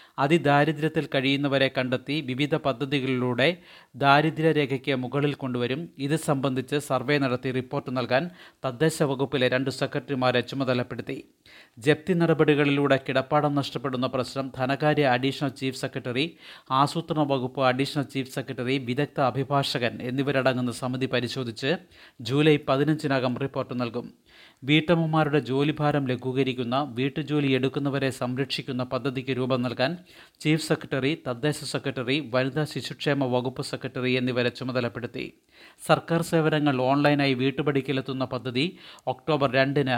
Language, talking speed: Malayalam, 100 wpm